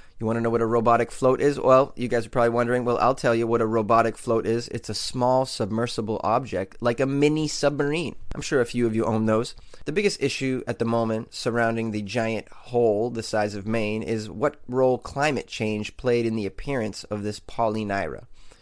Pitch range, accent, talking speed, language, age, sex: 110-135 Hz, American, 215 wpm, English, 30-49, male